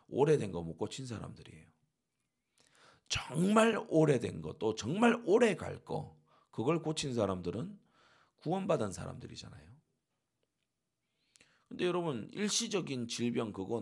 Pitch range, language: 110-170 Hz, Korean